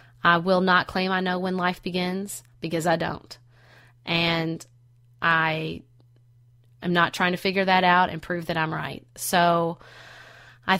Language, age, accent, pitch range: English, 30-49, American, 130-185 Hz